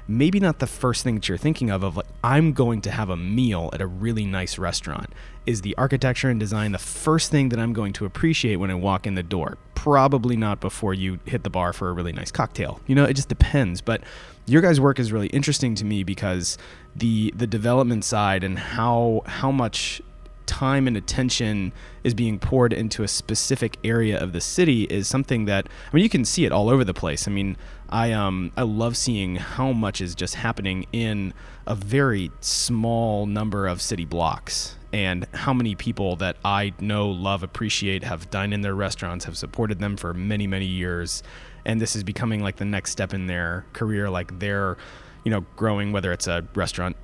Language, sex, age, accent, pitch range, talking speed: English, male, 20-39, American, 95-120 Hz, 210 wpm